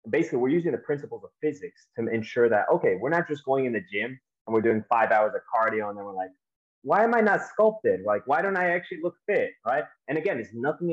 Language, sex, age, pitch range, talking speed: English, male, 20-39, 110-175 Hz, 255 wpm